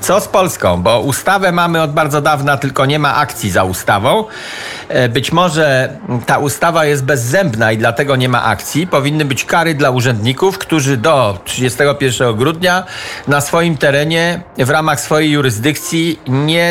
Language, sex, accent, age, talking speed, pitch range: Polish, male, native, 50-69, 155 wpm, 125-160 Hz